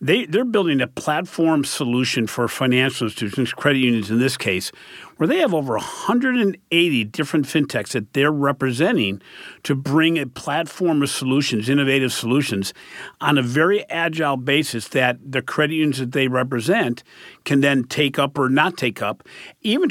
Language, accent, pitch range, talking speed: English, American, 125-155 Hz, 160 wpm